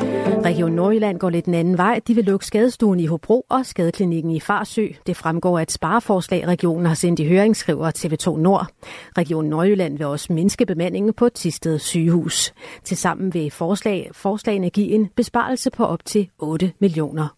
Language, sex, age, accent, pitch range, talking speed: Danish, female, 40-59, native, 165-205 Hz, 175 wpm